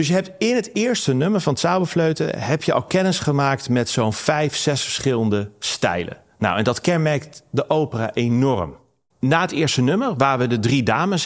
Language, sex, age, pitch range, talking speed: Dutch, male, 40-59, 120-165 Hz, 190 wpm